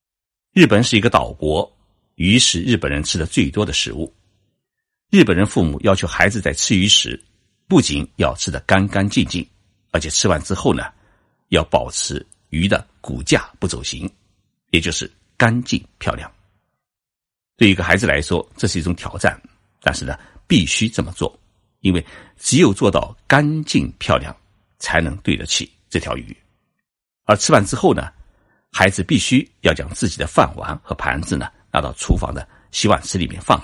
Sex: male